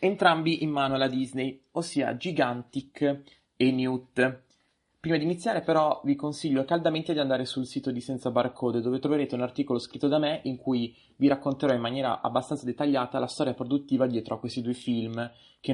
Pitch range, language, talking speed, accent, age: 120-140 Hz, Italian, 180 wpm, native, 20-39